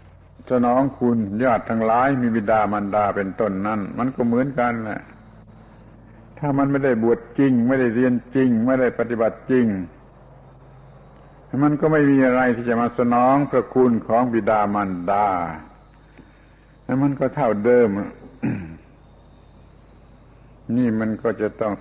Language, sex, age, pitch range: Thai, male, 70-89, 105-125 Hz